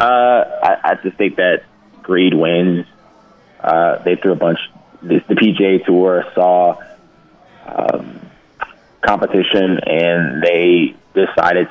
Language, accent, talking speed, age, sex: English, American, 120 wpm, 30-49, male